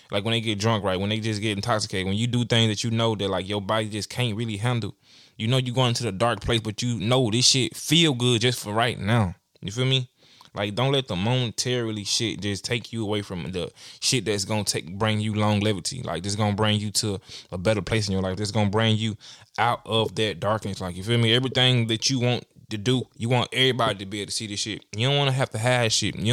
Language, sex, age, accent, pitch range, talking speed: English, male, 10-29, American, 110-135 Hz, 270 wpm